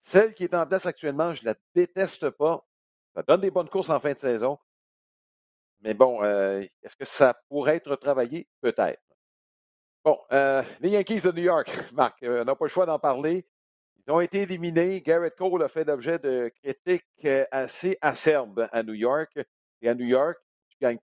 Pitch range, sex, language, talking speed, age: 120-180 Hz, male, French, 195 wpm, 50-69